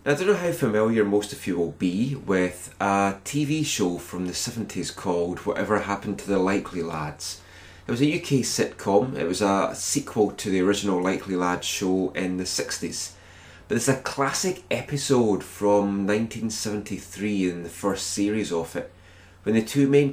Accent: British